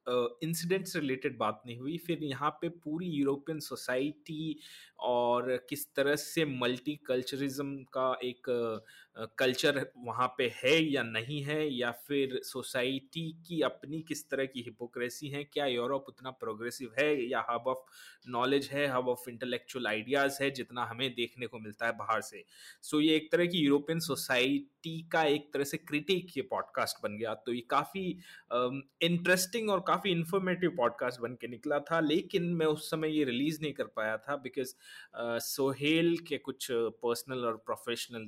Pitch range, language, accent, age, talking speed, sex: 120-155 Hz, Hindi, native, 30-49, 160 wpm, male